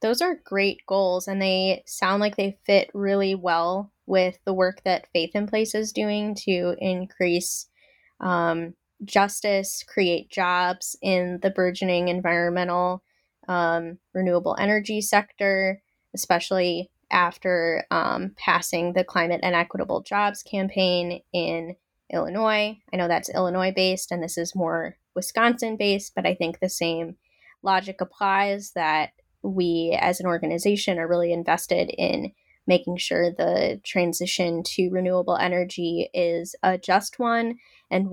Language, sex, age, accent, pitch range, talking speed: English, female, 10-29, American, 170-195 Hz, 130 wpm